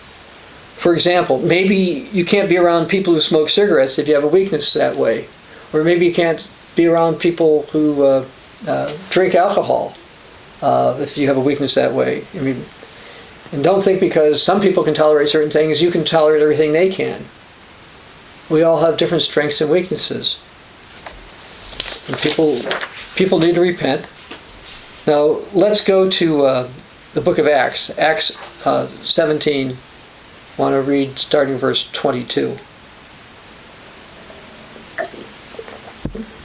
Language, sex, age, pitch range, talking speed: English, male, 50-69, 145-175 Hz, 145 wpm